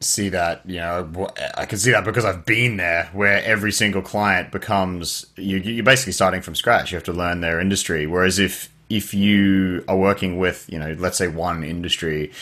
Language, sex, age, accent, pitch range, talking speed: English, male, 20-39, Australian, 90-110 Hz, 205 wpm